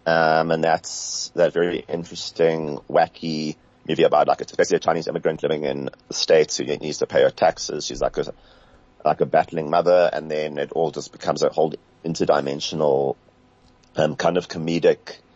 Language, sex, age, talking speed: English, male, 30-49, 175 wpm